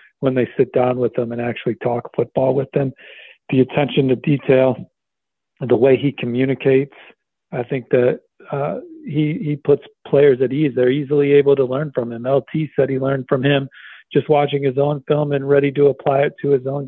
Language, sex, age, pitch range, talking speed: English, male, 40-59, 130-145 Hz, 205 wpm